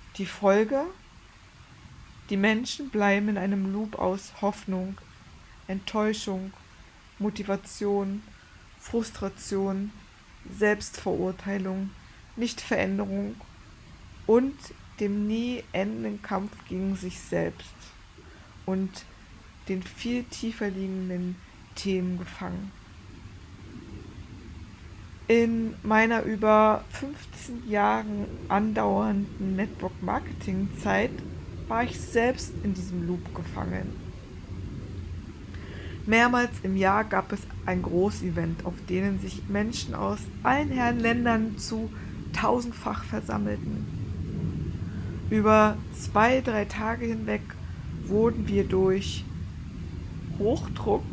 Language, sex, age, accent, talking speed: German, female, 20-39, German, 85 wpm